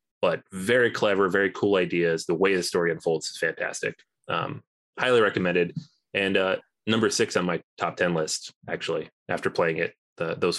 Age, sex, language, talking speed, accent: 20-39, male, English, 175 wpm, American